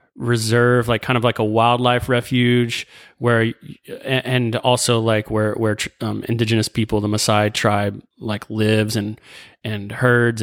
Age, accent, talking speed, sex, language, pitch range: 20-39, American, 145 wpm, male, English, 110-125 Hz